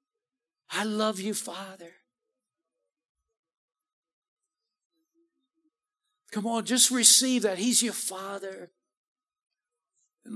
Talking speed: 75 wpm